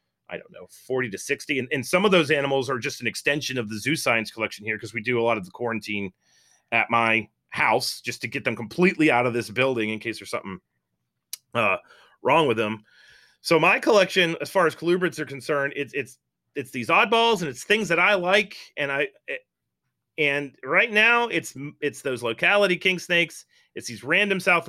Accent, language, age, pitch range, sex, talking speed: American, English, 30-49, 115-170 Hz, male, 210 wpm